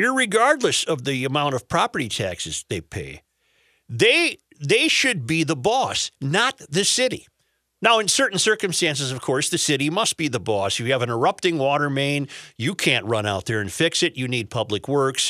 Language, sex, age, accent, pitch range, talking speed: English, male, 50-69, American, 135-215 Hz, 190 wpm